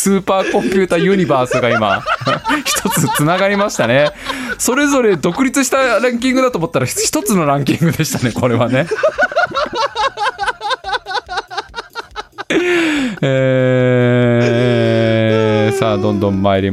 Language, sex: Japanese, male